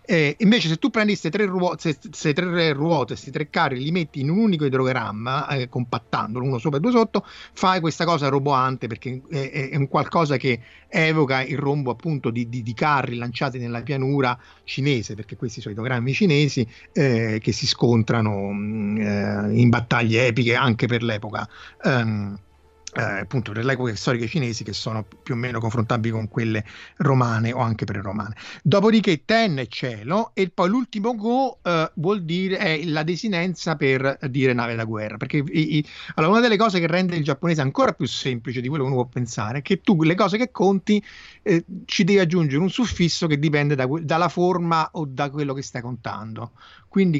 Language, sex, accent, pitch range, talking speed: Italian, male, native, 120-175 Hz, 185 wpm